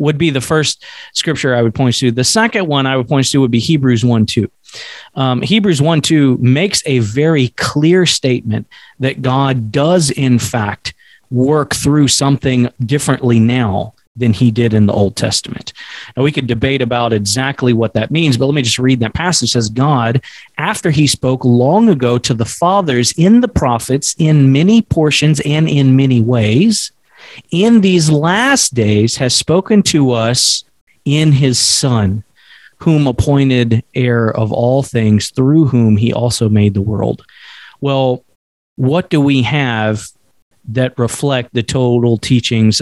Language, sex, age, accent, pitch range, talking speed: English, male, 40-59, American, 120-150 Hz, 165 wpm